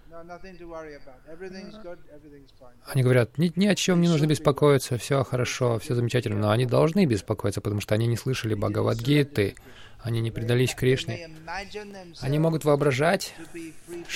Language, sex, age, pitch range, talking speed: Russian, male, 20-39, 120-155 Hz, 125 wpm